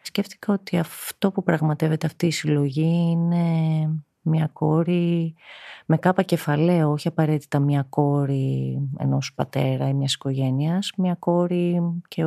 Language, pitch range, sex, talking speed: Greek, 135-165 Hz, female, 120 wpm